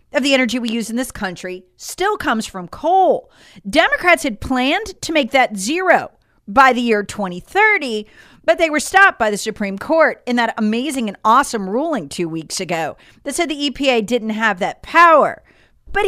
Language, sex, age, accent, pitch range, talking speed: English, female, 40-59, American, 225-315 Hz, 185 wpm